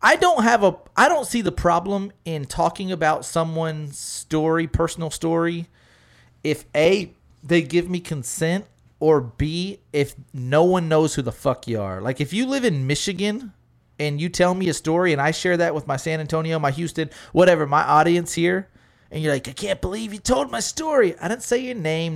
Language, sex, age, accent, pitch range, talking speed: English, male, 30-49, American, 120-170 Hz, 200 wpm